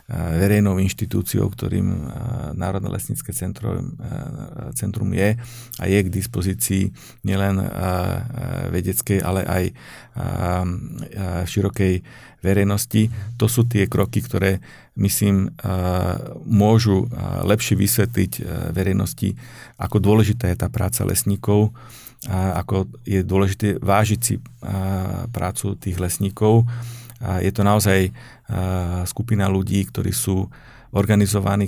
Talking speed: 95 wpm